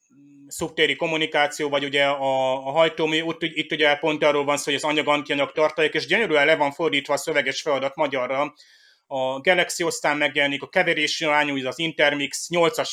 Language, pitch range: Hungarian, 140-165 Hz